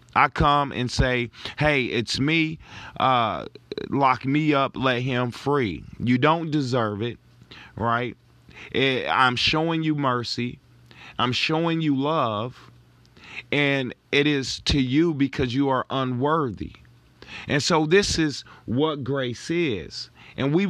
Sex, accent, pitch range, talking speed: male, American, 115-145 Hz, 130 wpm